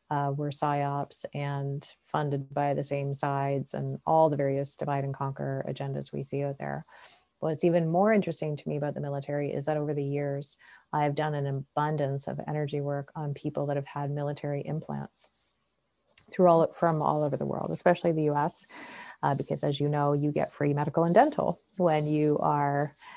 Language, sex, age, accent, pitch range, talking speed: English, female, 30-49, American, 140-165 Hz, 190 wpm